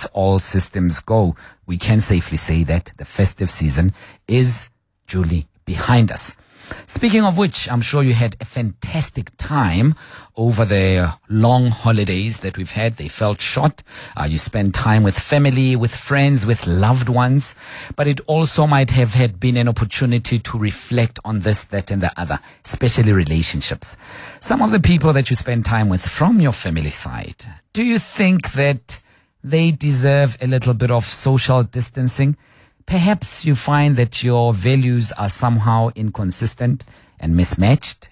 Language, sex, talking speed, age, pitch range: English, male, 160 wpm, 50-69, 95-130 Hz